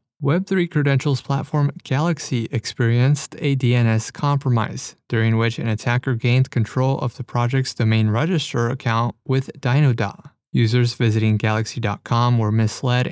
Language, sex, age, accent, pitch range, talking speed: English, male, 20-39, American, 115-140 Hz, 125 wpm